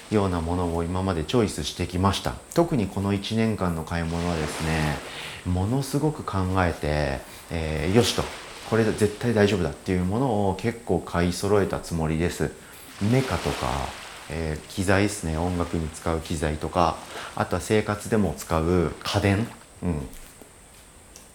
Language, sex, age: Japanese, male, 40-59